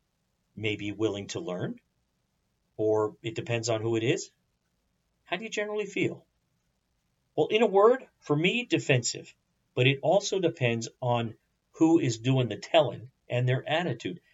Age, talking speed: 50-69, 150 wpm